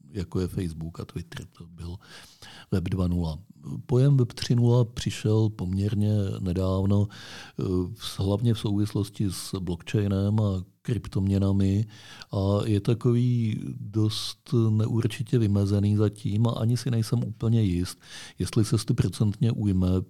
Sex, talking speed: male, 115 wpm